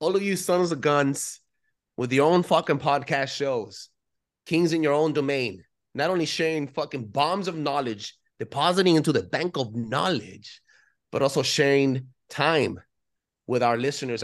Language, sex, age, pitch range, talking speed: English, male, 30-49, 125-165 Hz, 155 wpm